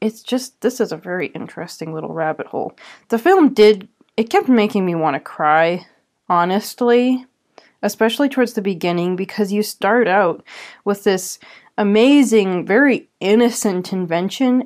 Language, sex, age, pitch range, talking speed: English, female, 20-39, 195-255 Hz, 145 wpm